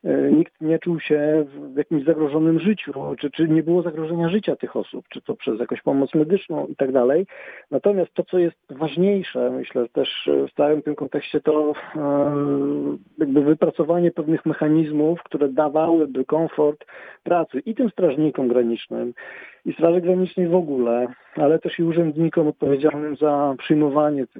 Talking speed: 150 wpm